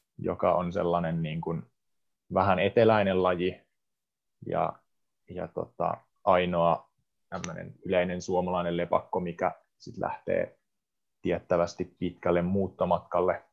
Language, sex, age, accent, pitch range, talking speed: Finnish, male, 30-49, native, 90-95 Hz, 75 wpm